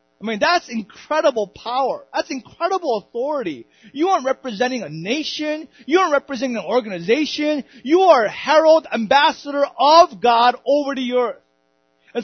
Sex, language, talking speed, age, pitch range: male, English, 140 wpm, 30-49, 165-255 Hz